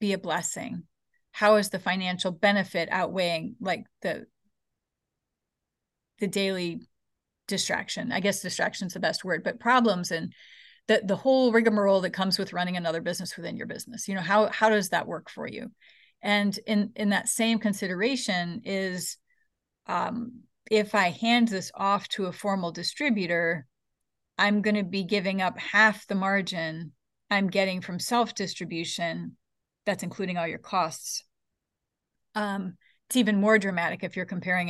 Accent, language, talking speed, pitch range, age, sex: American, English, 155 wpm, 180-215 Hz, 30-49, female